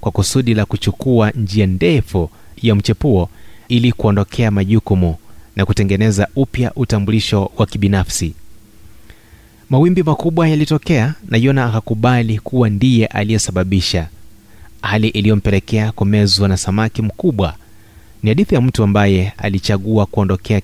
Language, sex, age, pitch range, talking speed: Swahili, male, 30-49, 95-115 Hz, 115 wpm